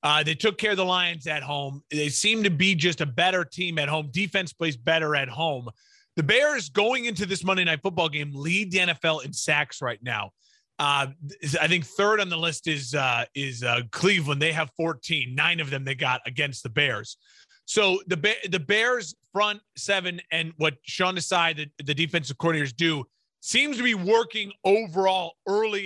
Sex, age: male, 30-49